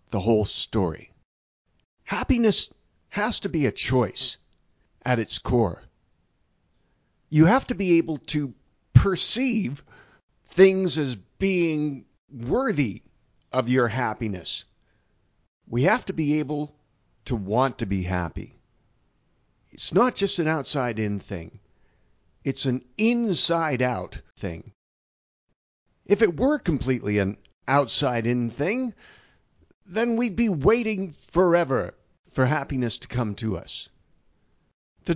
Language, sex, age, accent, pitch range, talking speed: English, male, 50-69, American, 105-165 Hz, 110 wpm